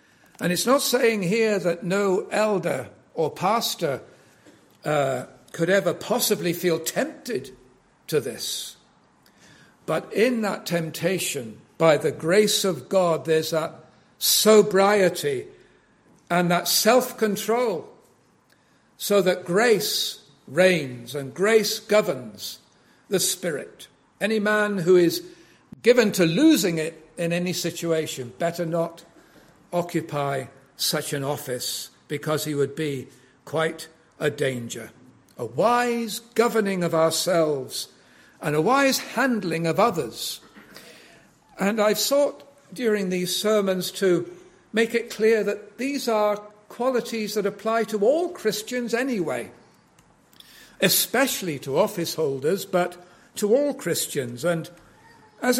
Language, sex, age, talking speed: English, male, 60-79, 115 wpm